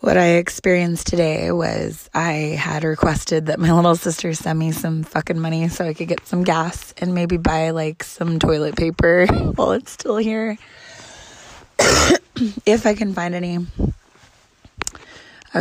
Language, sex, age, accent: English, female, 20-39, American